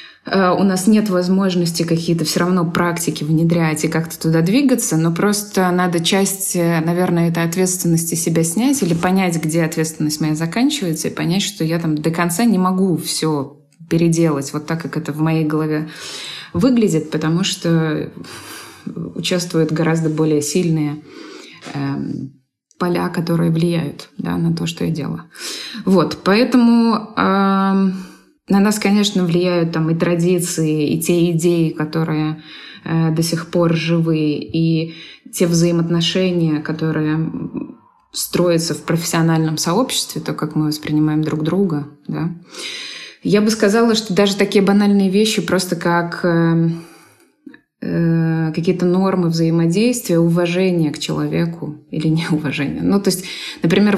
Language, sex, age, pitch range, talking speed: Russian, female, 20-39, 160-185 Hz, 130 wpm